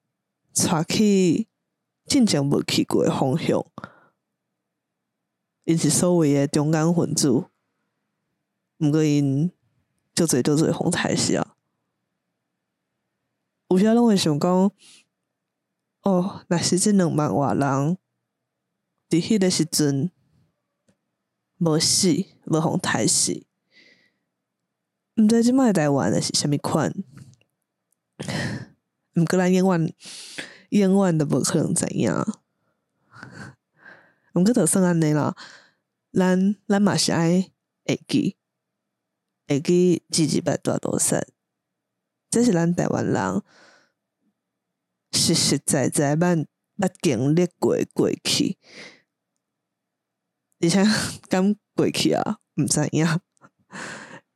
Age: 20-39